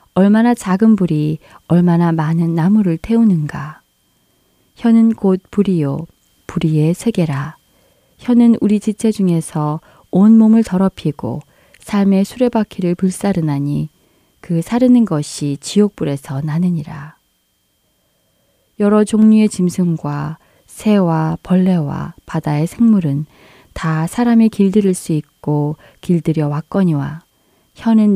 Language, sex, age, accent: Korean, female, 20-39, native